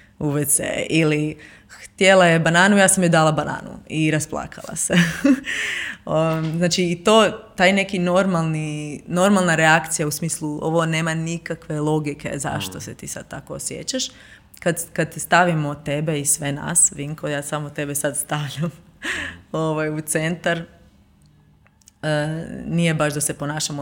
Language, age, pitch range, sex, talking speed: Croatian, 20-39, 150-170 Hz, female, 135 wpm